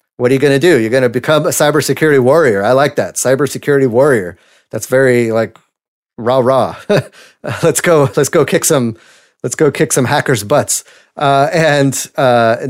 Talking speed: 185 wpm